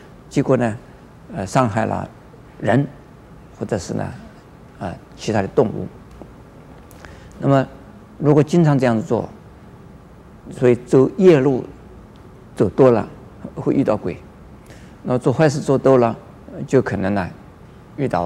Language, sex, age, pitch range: Chinese, male, 50-69, 120-150 Hz